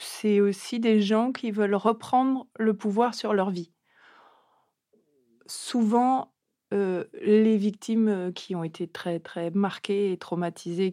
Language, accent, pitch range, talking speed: French, French, 180-215 Hz, 130 wpm